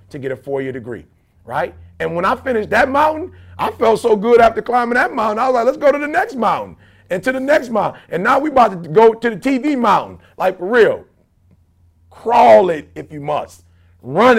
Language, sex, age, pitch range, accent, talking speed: English, male, 40-59, 160-255 Hz, American, 220 wpm